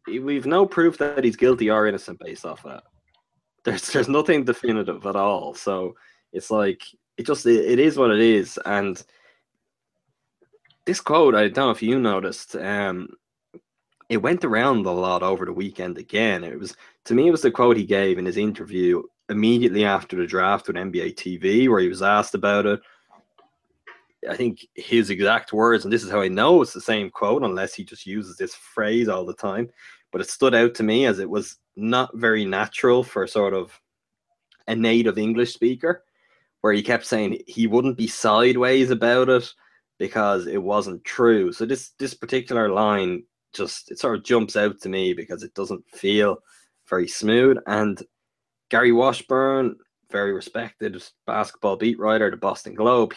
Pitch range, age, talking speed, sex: 100-125 Hz, 20-39, 180 wpm, male